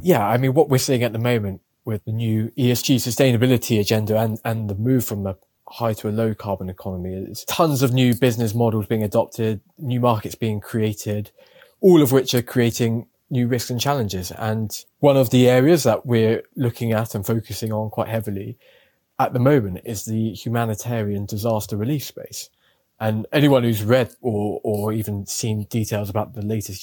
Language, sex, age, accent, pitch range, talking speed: English, male, 20-39, British, 110-130 Hz, 185 wpm